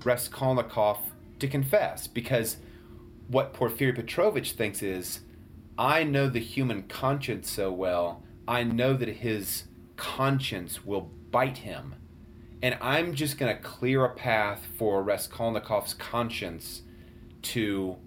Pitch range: 105-140 Hz